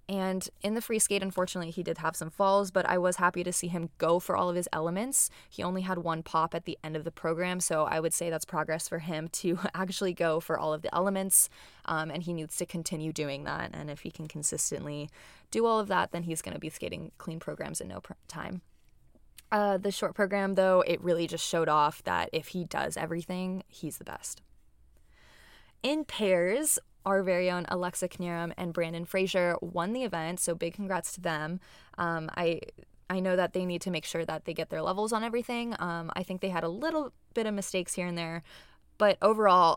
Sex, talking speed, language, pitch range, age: female, 220 wpm, English, 165-190 Hz, 20-39